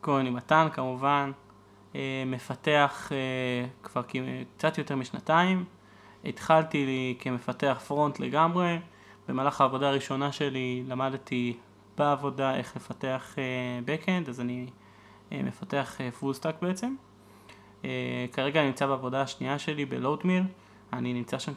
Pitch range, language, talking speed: 120-145 Hz, Hebrew, 110 wpm